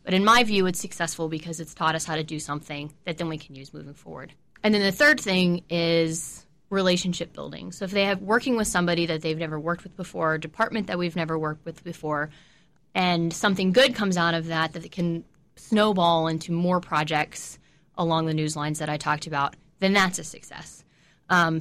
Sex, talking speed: female, 210 wpm